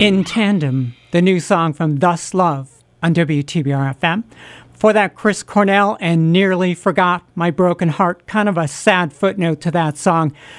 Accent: American